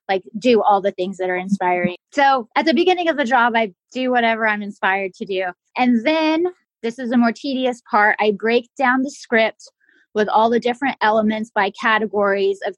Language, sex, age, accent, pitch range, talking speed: English, female, 20-39, American, 200-240 Hz, 200 wpm